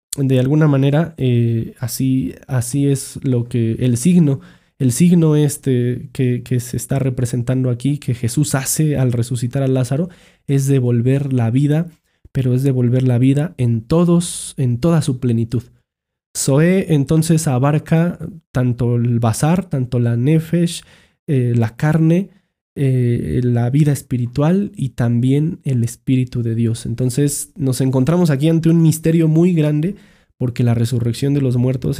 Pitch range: 125-160 Hz